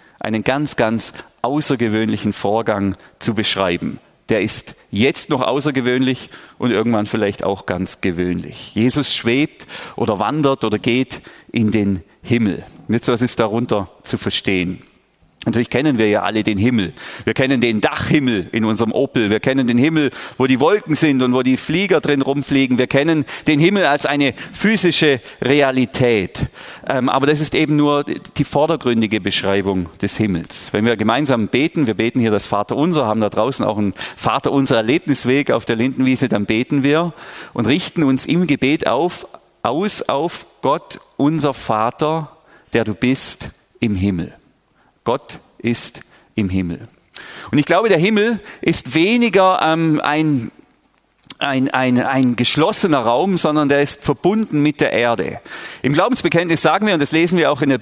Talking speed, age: 160 wpm, 40-59